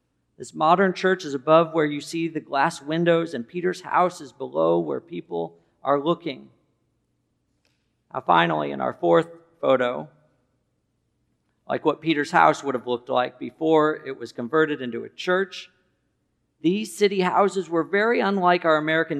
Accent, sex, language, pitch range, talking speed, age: American, male, English, 135-175 Hz, 155 wpm, 50-69